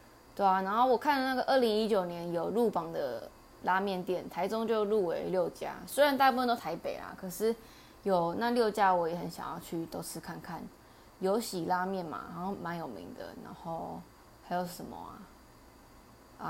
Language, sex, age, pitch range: Chinese, female, 20-39, 180-220 Hz